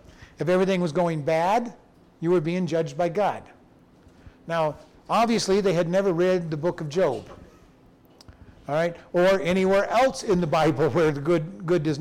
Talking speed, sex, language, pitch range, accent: 170 wpm, male, English, 150-195 Hz, American